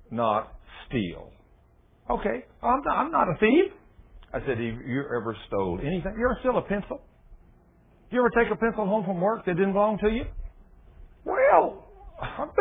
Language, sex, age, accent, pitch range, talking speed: English, male, 60-79, American, 160-240 Hz, 170 wpm